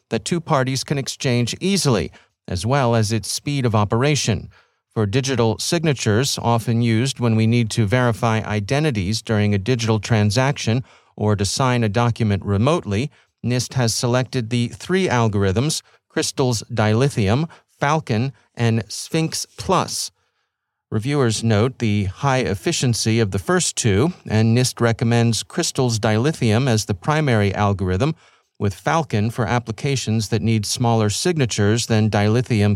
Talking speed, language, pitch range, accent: 135 wpm, English, 110-135 Hz, American